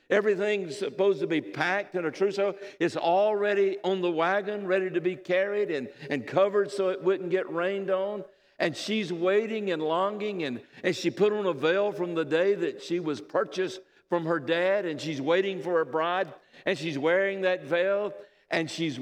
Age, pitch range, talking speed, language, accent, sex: 60-79, 130-195 Hz, 190 wpm, English, American, male